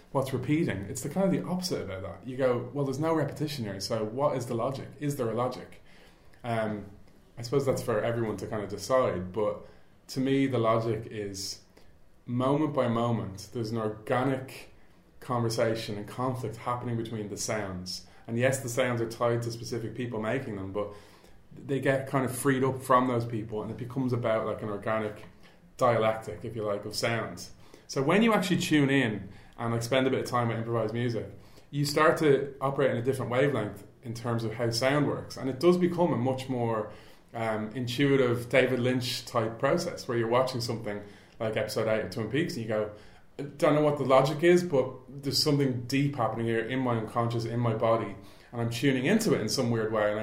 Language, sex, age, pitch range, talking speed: English, male, 30-49, 110-135 Hz, 210 wpm